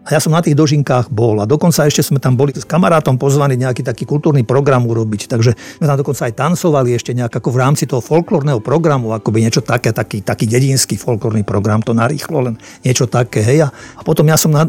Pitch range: 125-155 Hz